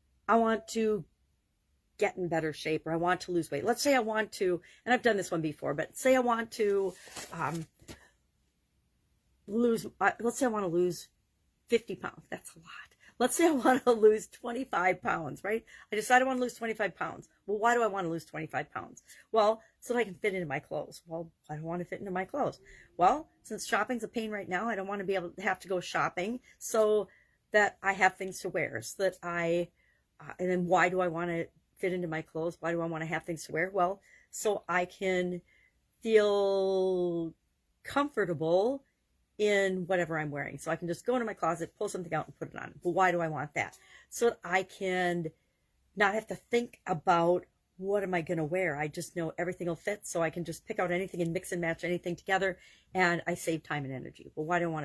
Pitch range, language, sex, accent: 165-210 Hz, English, female, American